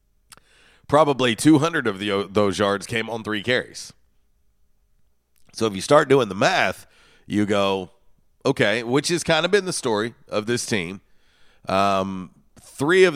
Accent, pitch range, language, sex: American, 90-110 Hz, English, male